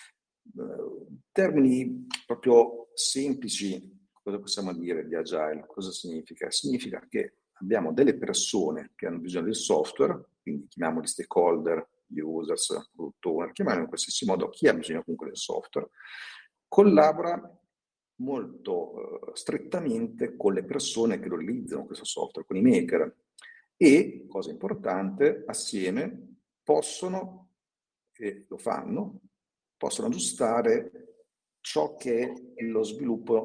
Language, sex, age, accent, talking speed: Italian, male, 50-69, native, 130 wpm